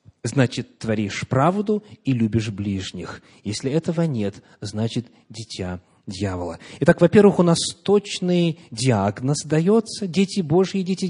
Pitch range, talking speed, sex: 115-170 Hz, 120 wpm, male